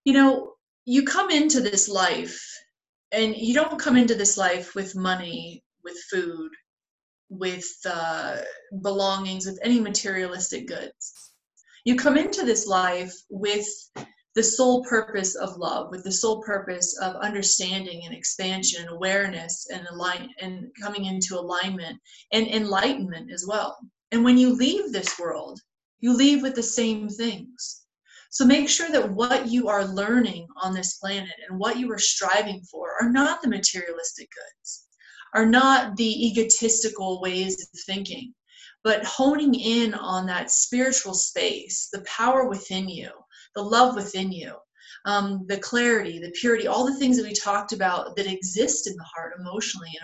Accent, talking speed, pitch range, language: American, 155 wpm, 185-250 Hz, English